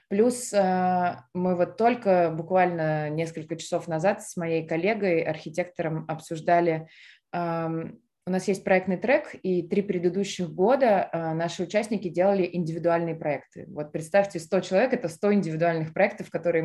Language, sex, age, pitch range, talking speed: Russian, female, 20-39, 165-205 Hz, 130 wpm